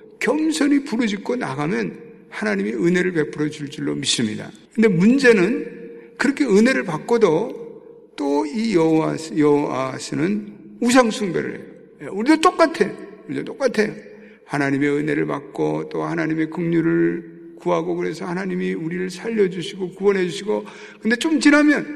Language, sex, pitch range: Korean, male, 150-230 Hz